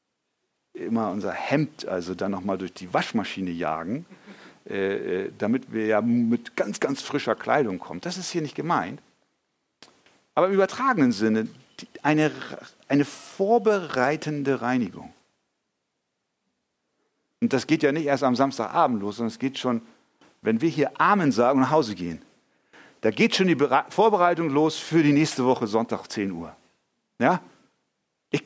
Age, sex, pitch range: 50-69, male, 140-220 Hz